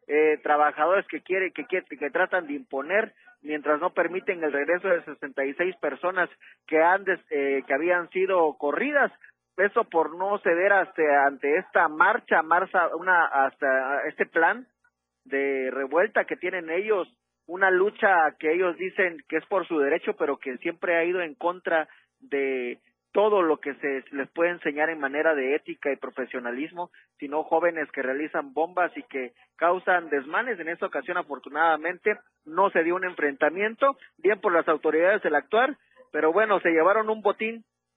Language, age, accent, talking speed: Spanish, 40-59, Mexican, 170 wpm